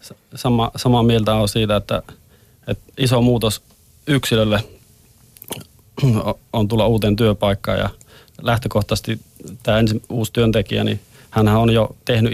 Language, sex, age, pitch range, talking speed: Finnish, male, 30-49, 105-120 Hz, 110 wpm